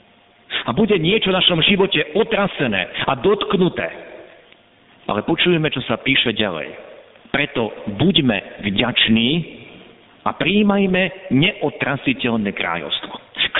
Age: 50-69